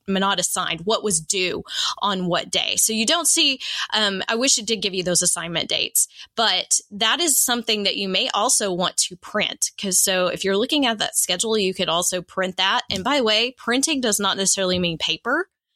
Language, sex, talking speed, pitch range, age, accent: English, female, 215 wpm, 180-245 Hz, 20-39, American